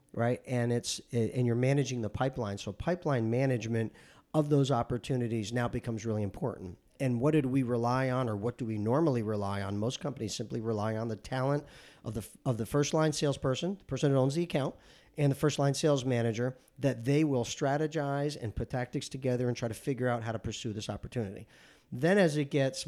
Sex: male